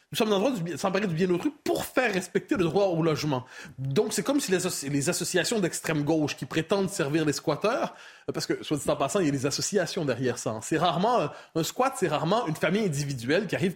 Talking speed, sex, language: 230 wpm, male, French